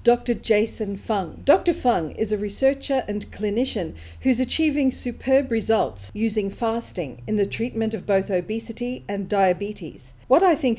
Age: 50-69